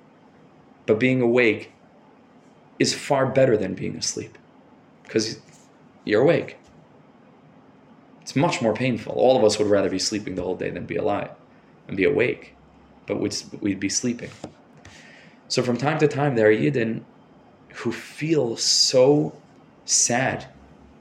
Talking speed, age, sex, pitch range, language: 140 wpm, 20-39, male, 100-120 Hz, English